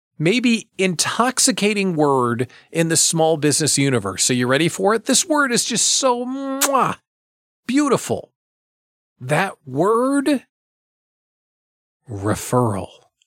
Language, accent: English, American